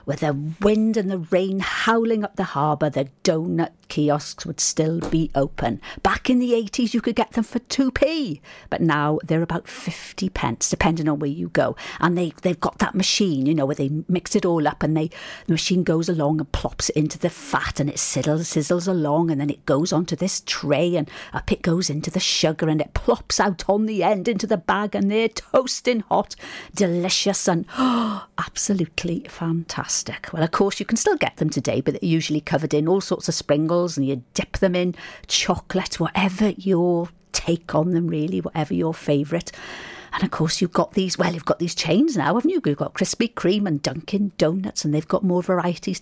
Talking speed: 205 wpm